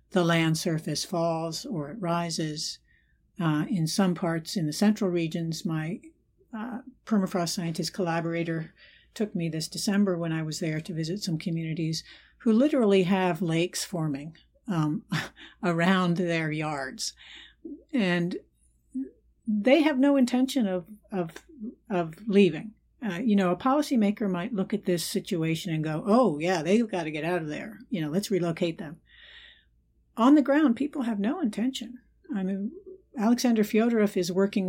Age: 60-79